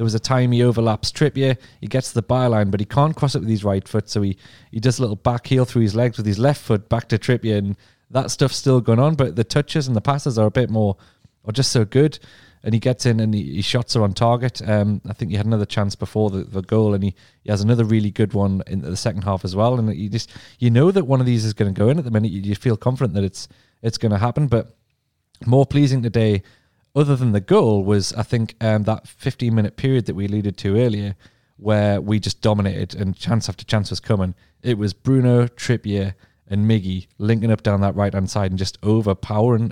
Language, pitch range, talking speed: English, 105-125 Hz, 250 wpm